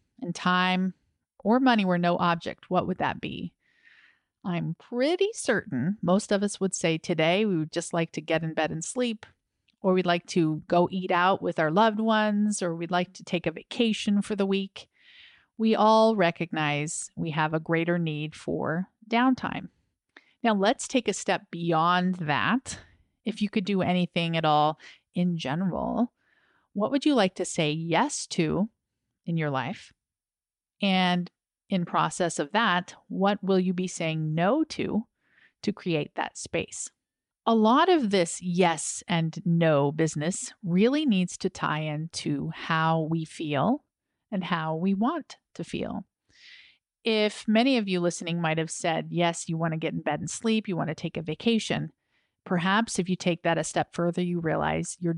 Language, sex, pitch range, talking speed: English, female, 165-215 Hz, 175 wpm